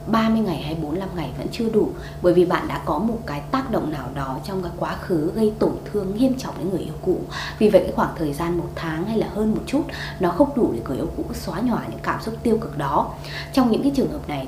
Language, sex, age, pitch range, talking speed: Vietnamese, female, 20-39, 165-225 Hz, 275 wpm